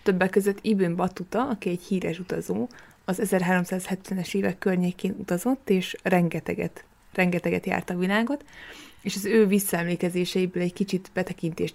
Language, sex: Hungarian, female